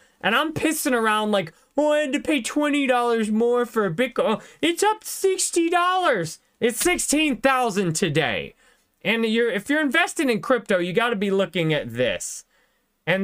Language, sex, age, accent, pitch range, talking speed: English, male, 30-49, American, 165-245 Hz, 180 wpm